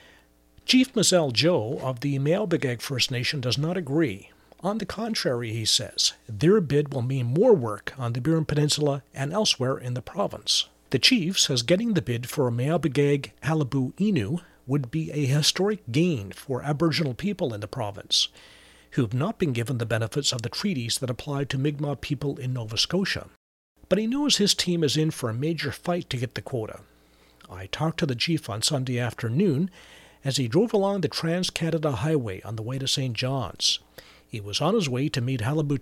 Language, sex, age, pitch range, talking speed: English, male, 40-59, 125-165 Hz, 195 wpm